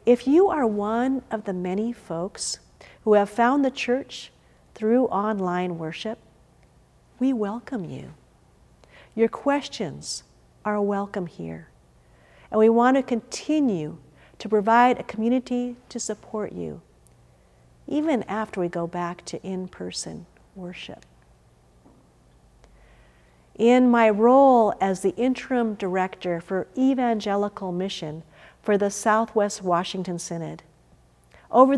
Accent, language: American, English